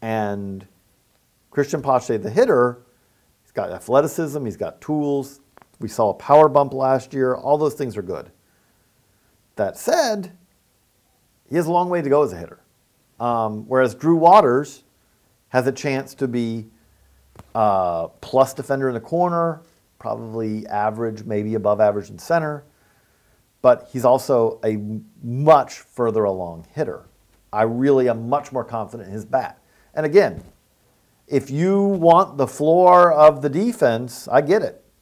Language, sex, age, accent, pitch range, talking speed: English, male, 50-69, American, 115-150 Hz, 150 wpm